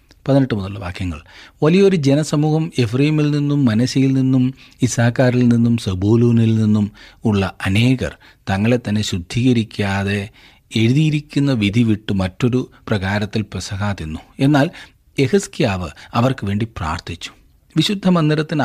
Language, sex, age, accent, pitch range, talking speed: Malayalam, male, 40-59, native, 105-145 Hz, 100 wpm